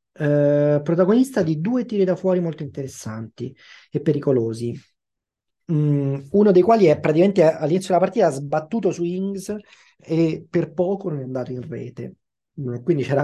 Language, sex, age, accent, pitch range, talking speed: Italian, male, 30-49, native, 135-180 Hz, 160 wpm